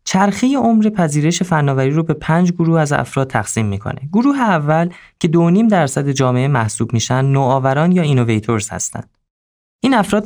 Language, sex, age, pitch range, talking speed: Persian, male, 20-39, 130-180 Hz, 150 wpm